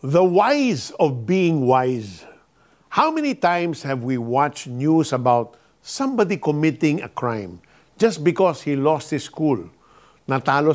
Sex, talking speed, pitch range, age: male, 135 wpm, 145-190 Hz, 50-69